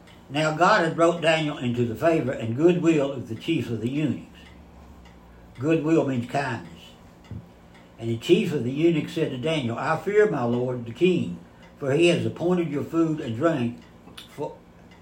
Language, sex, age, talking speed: English, male, 60-79, 170 wpm